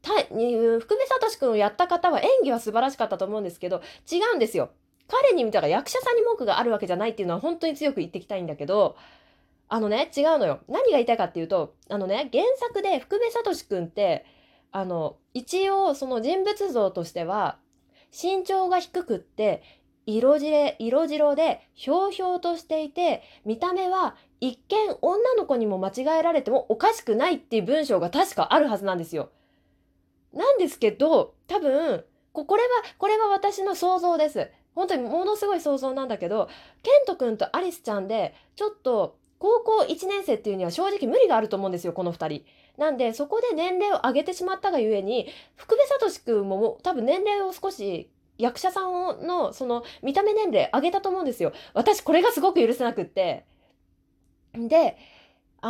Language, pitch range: Japanese, 230-390 Hz